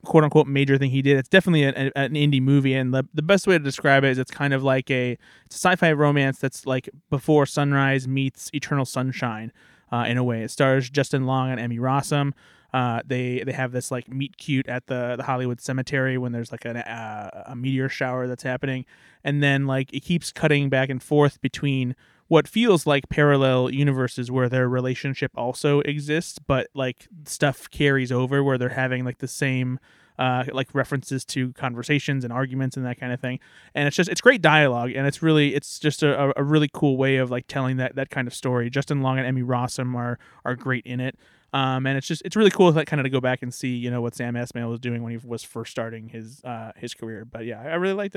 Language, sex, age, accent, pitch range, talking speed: English, male, 20-39, American, 125-145 Hz, 230 wpm